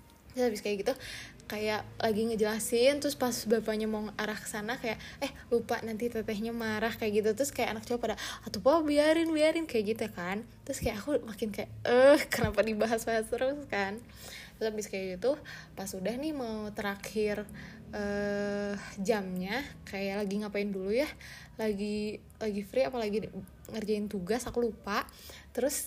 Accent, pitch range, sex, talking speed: native, 215-270 Hz, female, 160 wpm